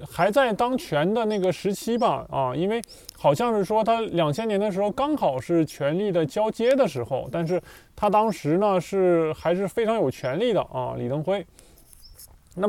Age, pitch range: 20-39, 150-225 Hz